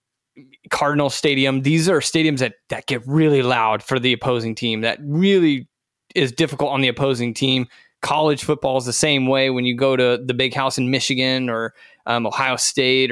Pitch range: 125-150 Hz